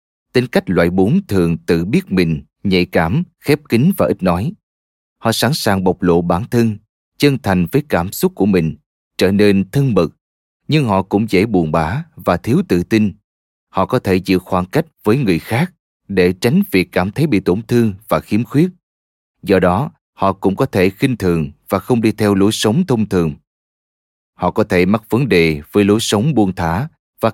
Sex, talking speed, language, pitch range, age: male, 200 wpm, Vietnamese, 85-120 Hz, 20-39